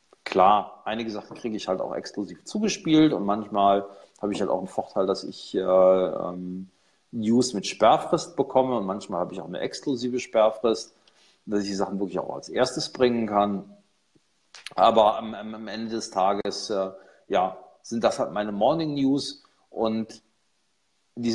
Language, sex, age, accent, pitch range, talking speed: German, male, 40-59, German, 100-125 Hz, 165 wpm